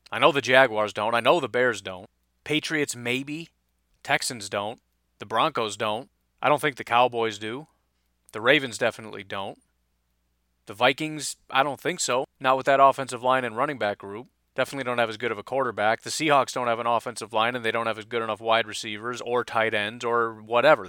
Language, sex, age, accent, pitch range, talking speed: English, male, 30-49, American, 115-160 Hz, 205 wpm